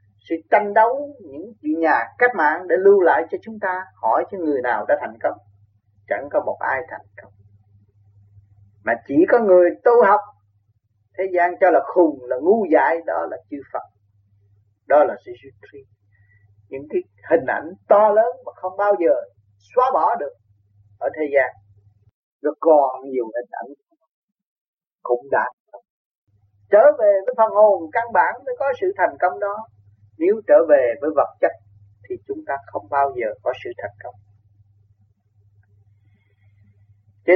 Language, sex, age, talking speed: Vietnamese, male, 30-49, 165 wpm